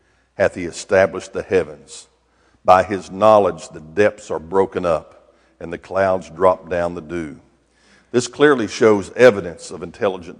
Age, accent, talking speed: 50-69, American, 150 wpm